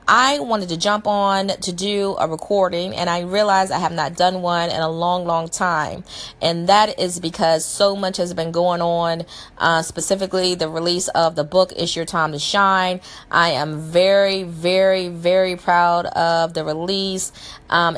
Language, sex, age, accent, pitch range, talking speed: English, female, 30-49, American, 155-180 Hz, 180 wpm